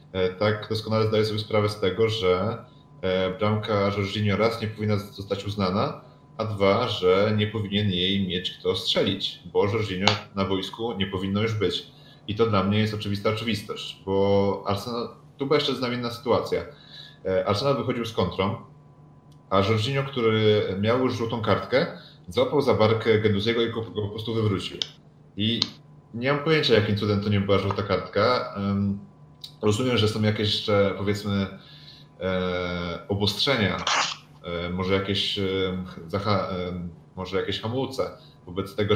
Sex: male